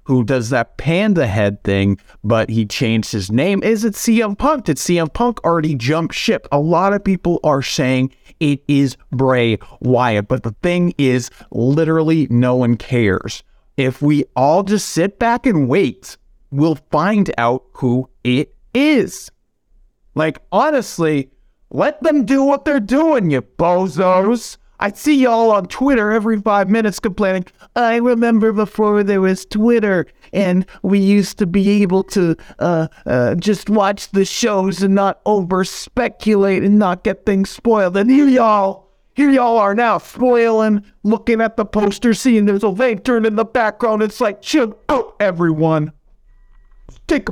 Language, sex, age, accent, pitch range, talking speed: English, male, 30-49, American, 145-225 Hz, 160 wpm